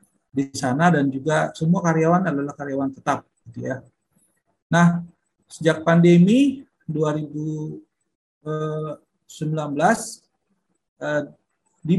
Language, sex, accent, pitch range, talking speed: Indonesian, male, native, 150-180 Hz, 80 wpm